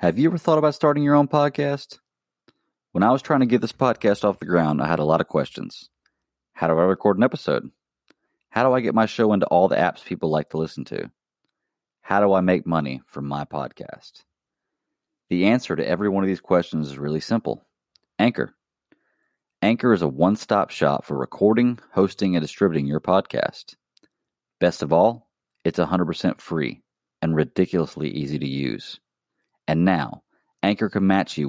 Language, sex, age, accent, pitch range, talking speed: English, male, 30-49, American, 80-115 Hz, 185 wpm